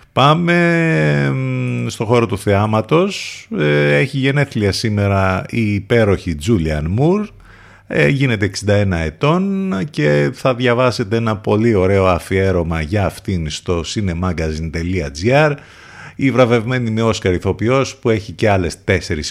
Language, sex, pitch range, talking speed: Greek, male, 90-120 Hz, 110 wpm